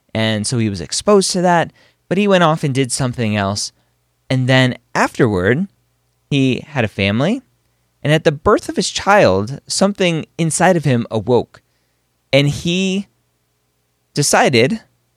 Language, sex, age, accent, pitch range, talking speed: English, male, 20-39, American, 105-155 Hz, 145 wpm